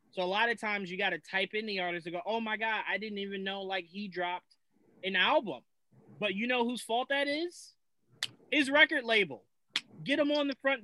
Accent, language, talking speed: American, English, 225 wpm